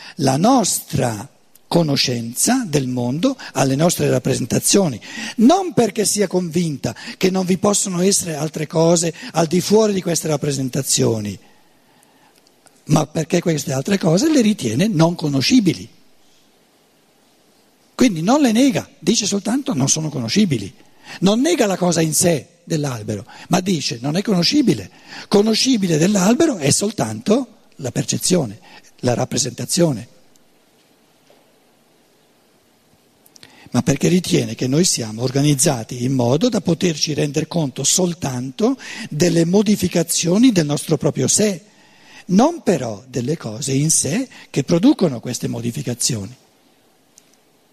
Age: 60-79